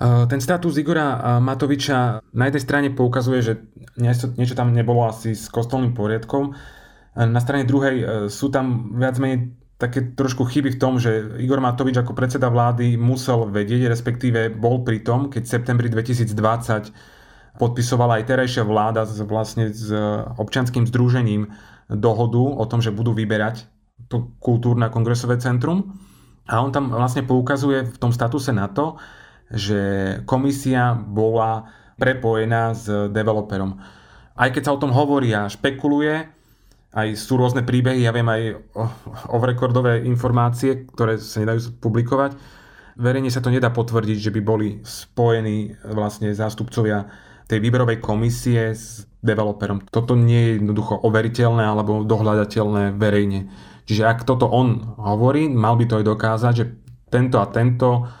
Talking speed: 140 wpm